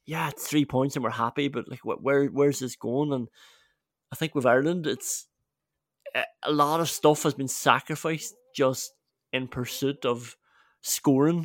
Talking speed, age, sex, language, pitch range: 160 wpm, 20-39, male, English, 130-160 Hz